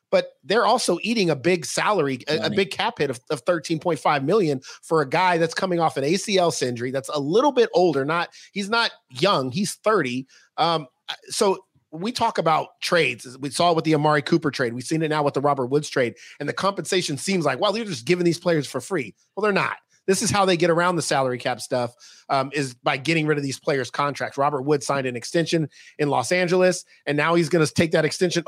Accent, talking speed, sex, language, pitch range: American, 230 wpm, male, English, 145-190 Hz